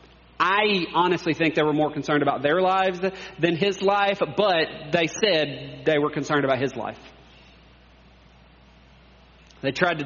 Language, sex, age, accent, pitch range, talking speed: English, male, 40-59, American, 120-160 Hz, 150 wpm